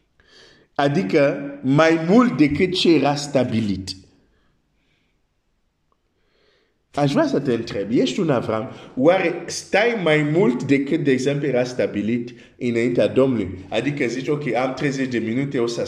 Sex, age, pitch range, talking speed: male, 50-69, 100-140 Hz, 130 wpm